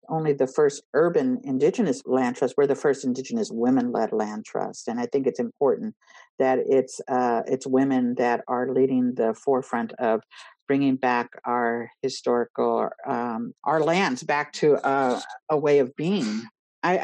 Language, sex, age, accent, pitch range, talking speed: English, female, 50-69, American, 130-155 Hz, 160 wpm